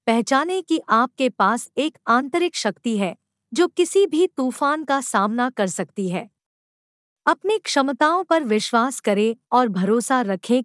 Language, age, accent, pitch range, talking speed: Hindi, 50-69, native, 215-295 Hz, 140 wpm